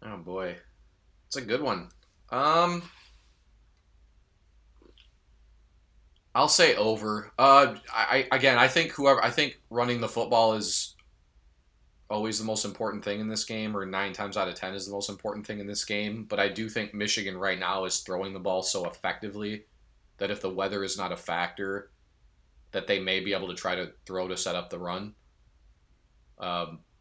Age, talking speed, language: 20-39, 180 wpm, English